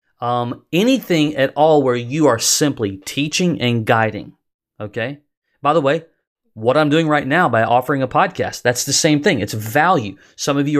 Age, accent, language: 30-49, American, English